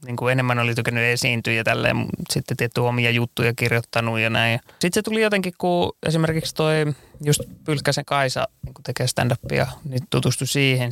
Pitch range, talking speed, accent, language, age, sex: 120-145 Hz, 170 wpm, native, Finnish, 20-39, male